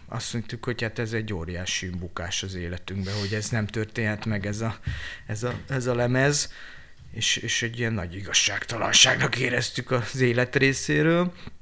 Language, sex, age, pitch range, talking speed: Hungarian, male, 30-49, 105-125 Hz, 165 wpm